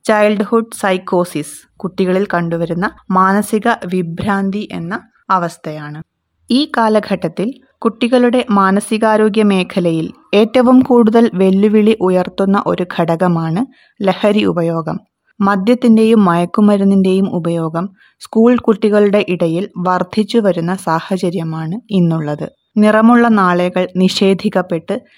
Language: Malayalam